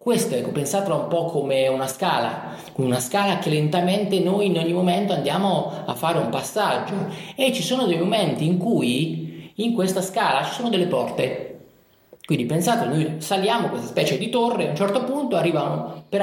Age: 30-49